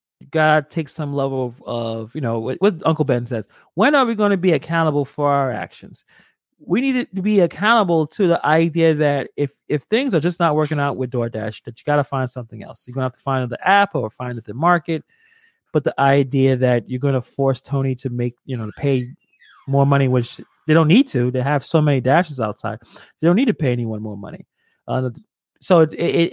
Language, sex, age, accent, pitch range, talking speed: English, male, 30-49, American, 130-185 Hz, 230 wpm